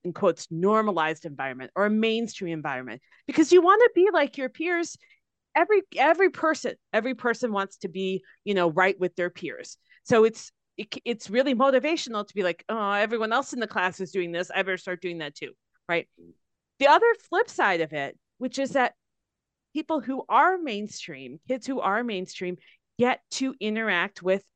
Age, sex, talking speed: 30-49, female, 185 wpm